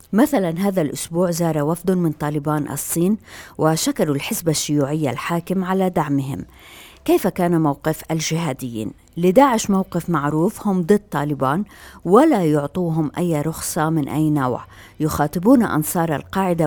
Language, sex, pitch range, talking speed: Arabic, female, 150-185 Hz, 120 wpm